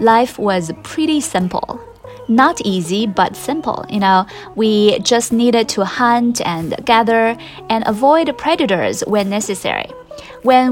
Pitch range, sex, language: 185-240 Hz, female, Chinese